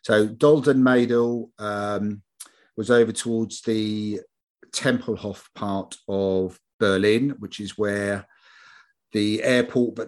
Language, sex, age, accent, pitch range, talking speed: English, male, 40-59, British, 95-115 Hz, 105 wpm